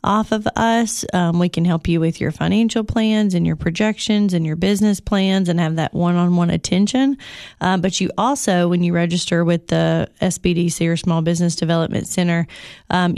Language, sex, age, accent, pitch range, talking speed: English, female, 30-49, American, 170-195 Hz, 180 wpm